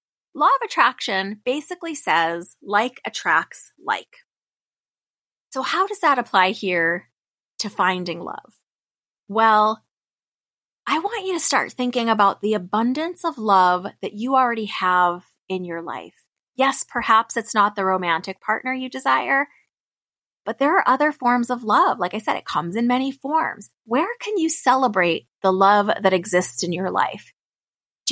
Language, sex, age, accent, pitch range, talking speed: English, female, 30-49, American, 190-260 Hz, 155 wpm